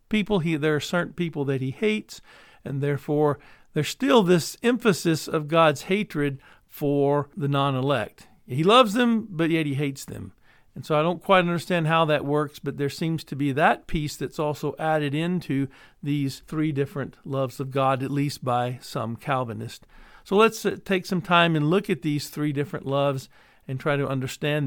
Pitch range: 135-175 Hz